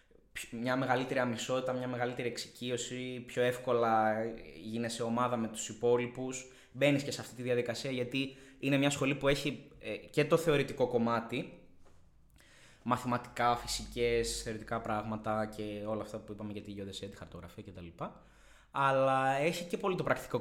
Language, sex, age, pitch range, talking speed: Greek, male, 20-39, 105-135 Hz, 145 wpm